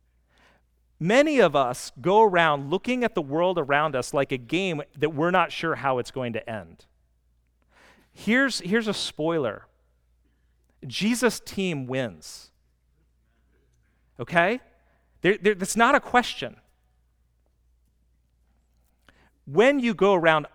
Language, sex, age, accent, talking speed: English, male, 40-59, American, 115 wpm